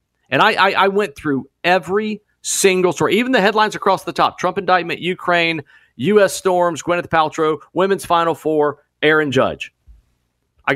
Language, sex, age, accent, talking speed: English, male, 40-59, American, 155 wpm